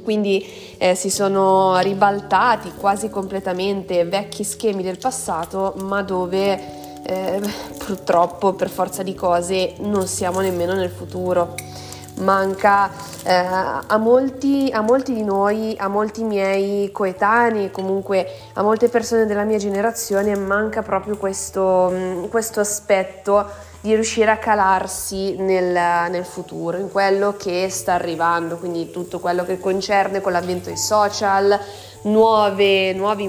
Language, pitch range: Italian, 185-225 Hz